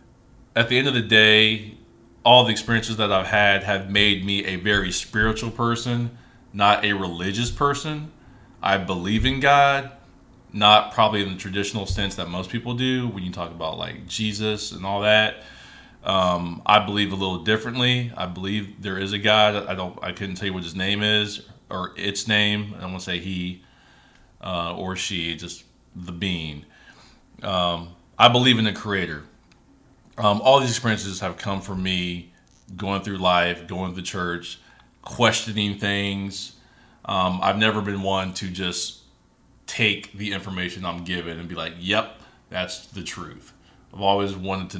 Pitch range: 90-105 Hz